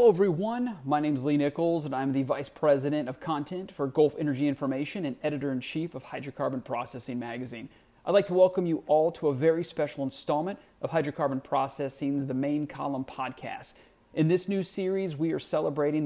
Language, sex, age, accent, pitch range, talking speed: English, male, 30-49, American, 140-180 Hz, 185 wpm